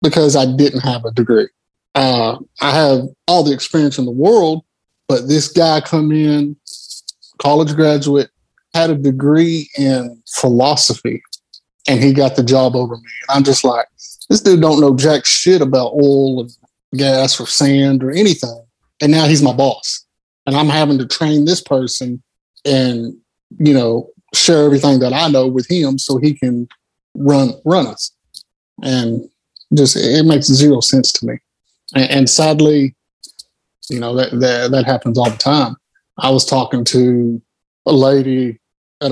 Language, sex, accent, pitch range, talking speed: English, male, American, 125-145 Hz, 165 wpm